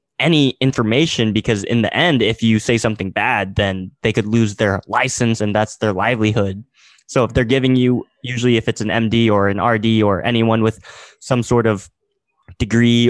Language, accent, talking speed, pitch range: English, American, 190 wpm, 105-120 Hz